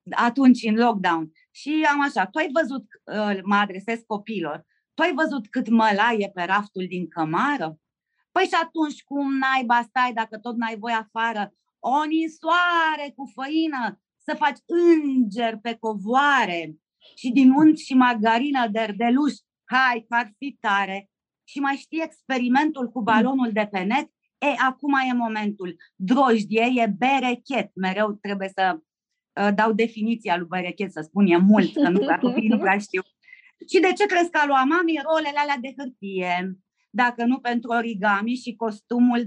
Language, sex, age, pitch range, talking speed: Romanian, female, 30-49, 220-295 Hz, 160 wpm